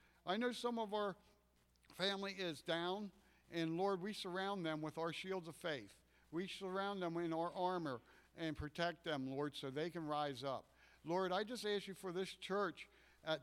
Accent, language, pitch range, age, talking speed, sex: American, English, 160-200 Hz, 60-79, 190 wpm, male